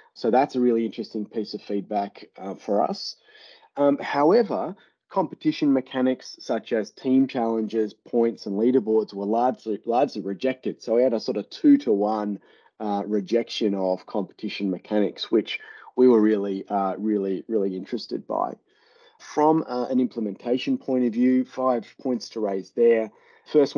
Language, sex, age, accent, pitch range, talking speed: English, male, 30-49, Australian, 105-130 Hz, 155 wpm